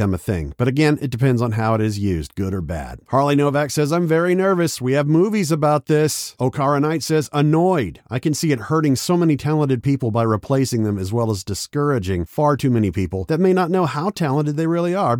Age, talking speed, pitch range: 50-69, 230 wpm, 115-165 Hz